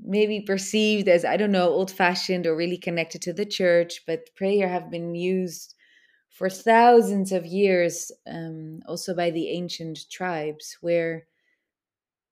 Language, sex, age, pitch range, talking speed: English, female, 20-39, 165-190 Hz, 145 wpm